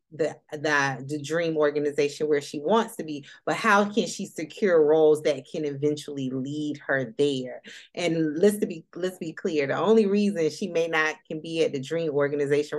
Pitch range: 150-205 Hz